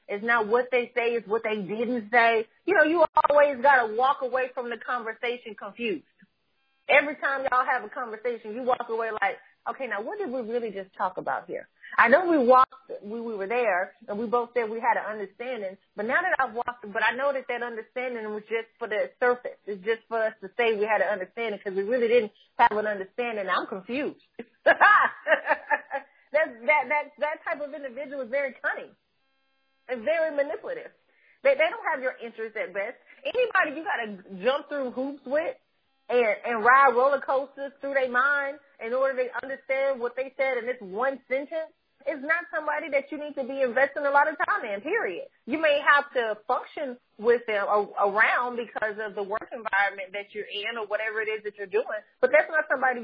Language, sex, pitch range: English, female, 225-285 Hz